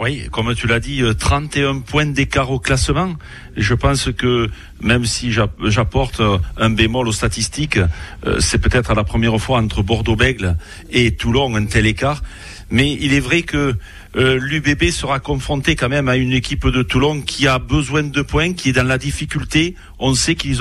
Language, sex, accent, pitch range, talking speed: French, male, French, 115-150 Hz, 180 wpm